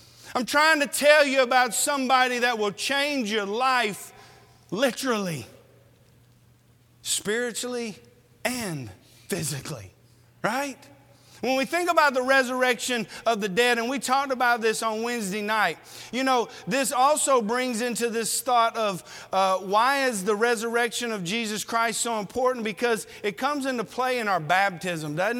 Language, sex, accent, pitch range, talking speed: English, male, American, 165-245 Hz, 145 wpm